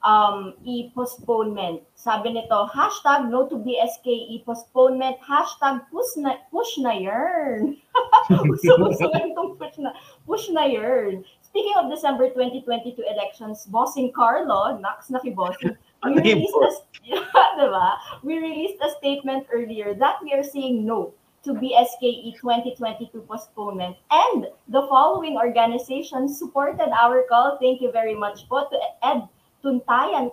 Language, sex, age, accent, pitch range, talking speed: Filipino, female, 20-39, native, 215-270 Hz, 125 wpm